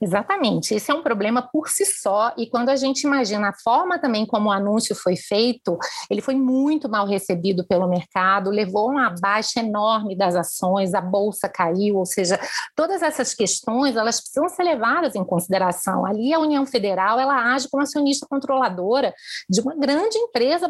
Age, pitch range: 30-49, 205-280 Hz